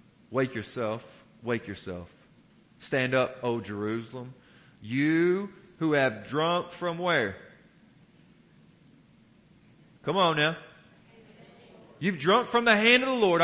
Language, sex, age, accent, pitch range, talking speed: English, male, 40-59, American, 180-270 Hz, 110 wpm